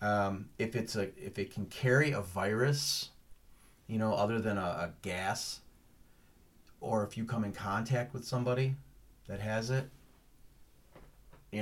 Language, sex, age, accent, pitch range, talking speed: English, male, 30-49, American, 105-125 Hz, 150 wpm